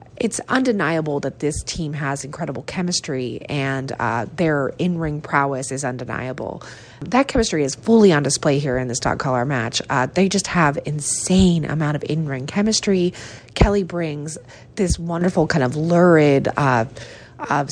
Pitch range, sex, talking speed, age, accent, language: 130-170 Hz, female, 155 wpm, 30-49, American, English